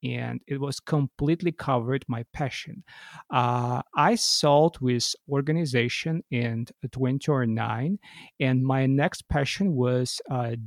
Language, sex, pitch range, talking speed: English, male, 125-140 Hz, 110 wpm